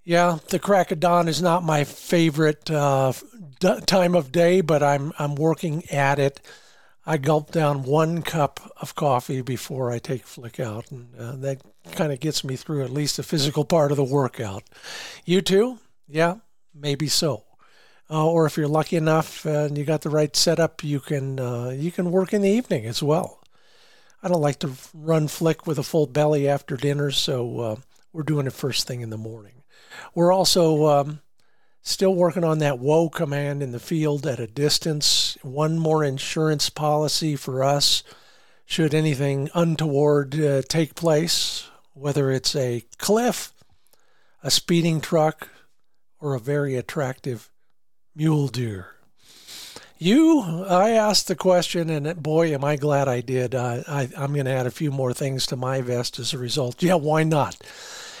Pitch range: 135-165 Hz